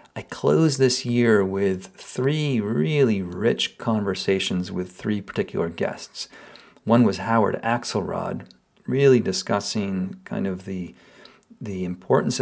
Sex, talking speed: male, 115 wpm